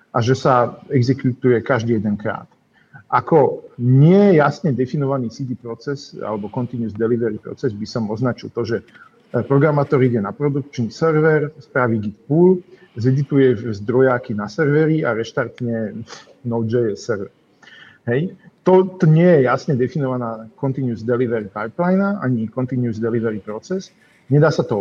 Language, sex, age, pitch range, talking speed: English, male, 50-69, 115-145 Hz, 125 wpm